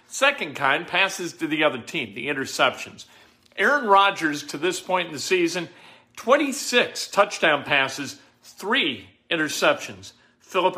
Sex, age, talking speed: male, 50-69, 130 wpm